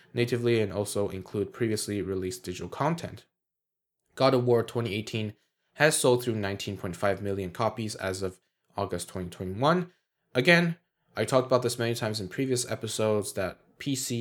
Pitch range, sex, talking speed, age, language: 95-120 Hz, male, 145 wpm, 10-29, English